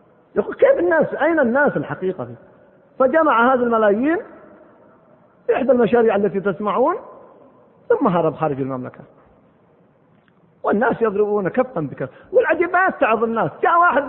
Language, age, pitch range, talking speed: Arabic, 40-59, 220-290 Hz, 115 wpm